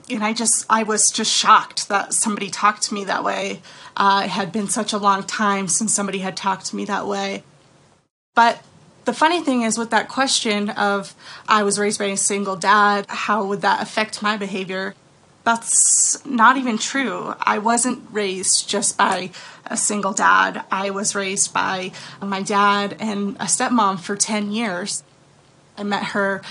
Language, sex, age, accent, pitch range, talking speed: English, female, 20-39, American, 200-230 Hz, 180 wpm